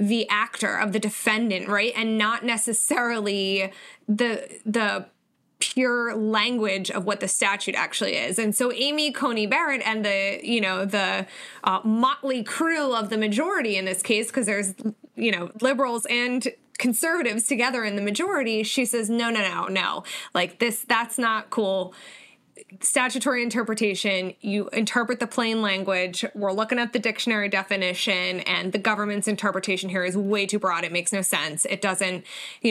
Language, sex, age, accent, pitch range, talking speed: English, female, 20-39, American, 200-240 Hz, 165 wpm